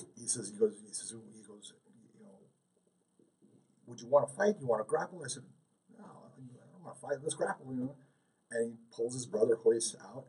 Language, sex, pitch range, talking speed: English, male, 120-190 Hz, 225 wpm